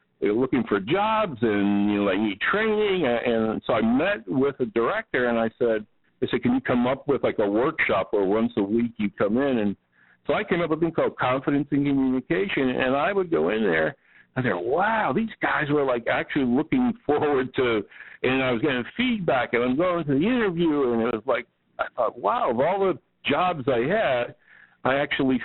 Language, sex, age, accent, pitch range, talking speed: English, male, 60-79, American, 115-160 Hz, 220 wpm